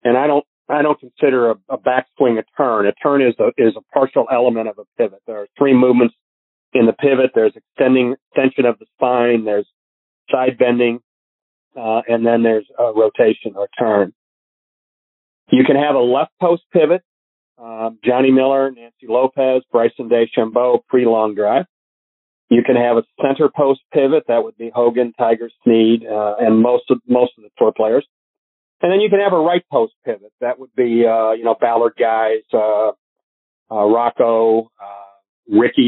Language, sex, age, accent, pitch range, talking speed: English, male, 40-59, American, 110-135 Hz, 175 wpm